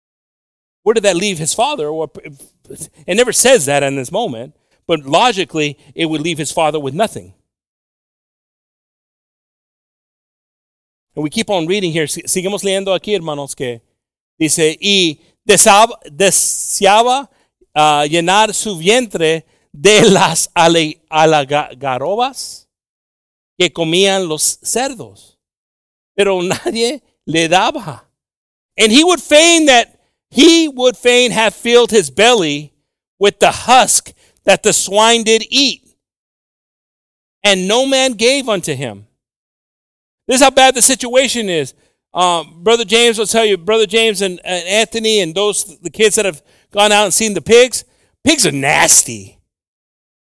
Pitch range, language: 165-235 Hz, English